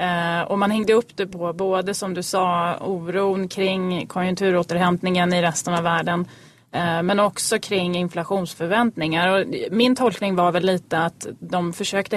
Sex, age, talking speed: female, 30-49, 150 wpm